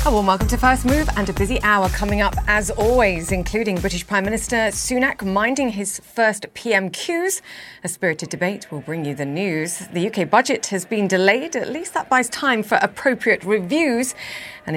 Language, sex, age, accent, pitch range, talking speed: English, female, 30-49, British, 160-205 Hz, 185 wpm